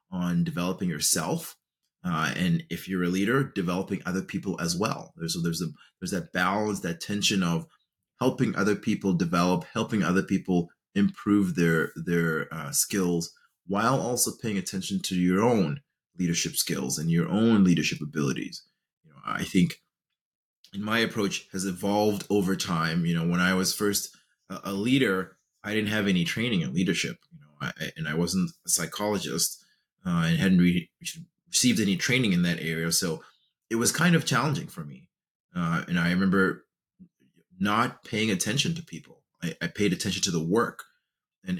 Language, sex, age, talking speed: English, male, 30-49, 170 wpm